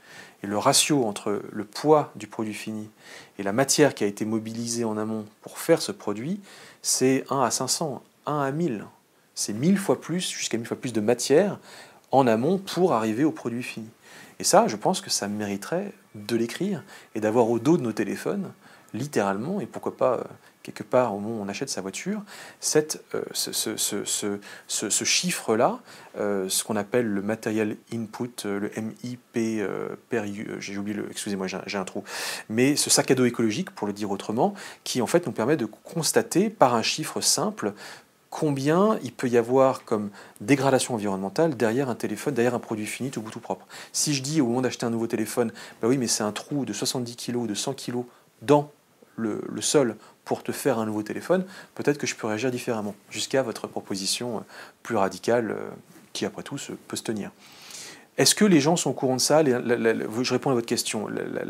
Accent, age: French, 40-59